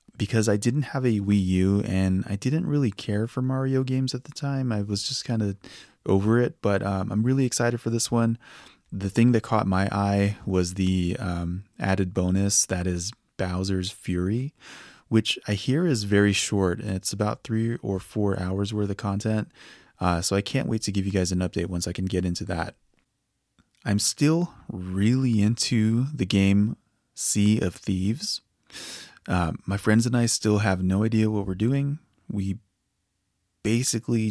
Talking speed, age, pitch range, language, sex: 180 wpm, 20-39, 95-115 Hz, English, male